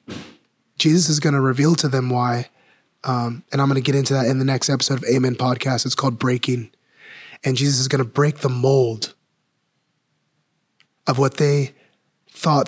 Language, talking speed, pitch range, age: English, 180 wpm, 125-145 Hz, 20-39